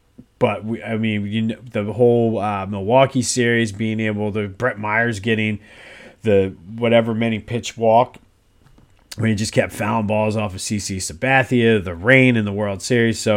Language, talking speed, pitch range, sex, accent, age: English, 160 wpm, 105-125 Hz, male, American, 30-49